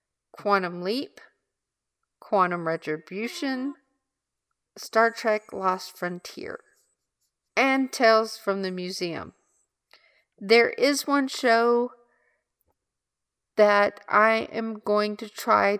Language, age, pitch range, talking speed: English, 40-59, 180-230 Hz, 85 wpm